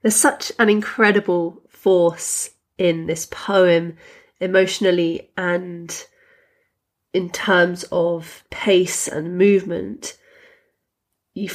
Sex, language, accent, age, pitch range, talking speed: female, English, British, 30-49, 170-215 Hz, 90 wpm